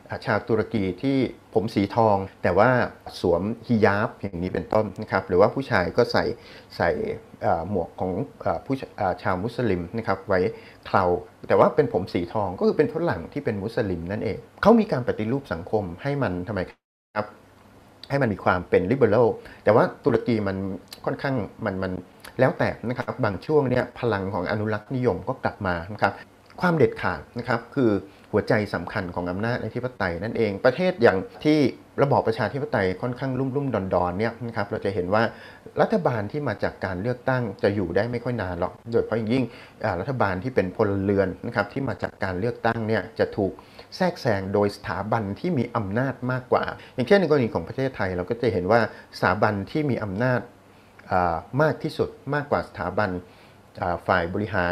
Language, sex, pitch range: Thai, male, 95-125 Hz